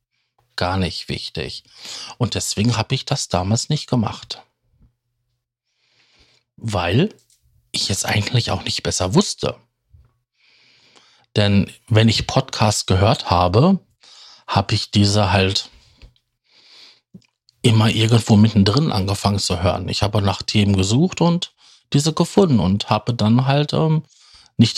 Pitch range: 100-125 Hz